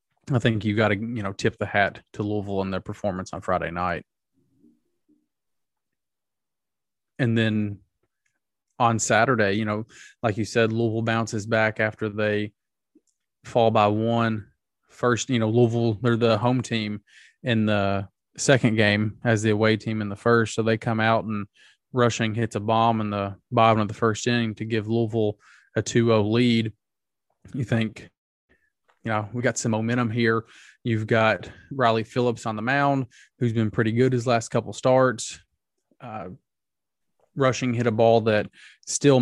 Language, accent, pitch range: English, American, 110-125 Hz